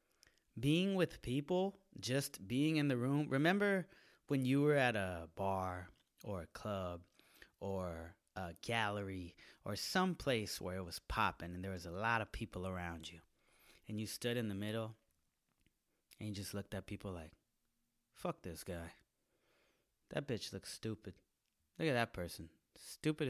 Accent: American